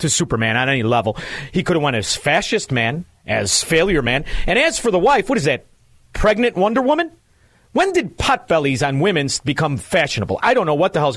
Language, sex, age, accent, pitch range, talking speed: English, male, 40-59, American, 125-185 Hz, 215 wpm